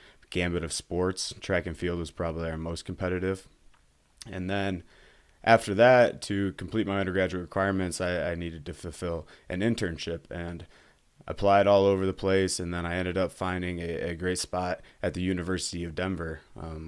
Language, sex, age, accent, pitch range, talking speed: English, male, 20-39, American, 85-95 Hz, 175 wpm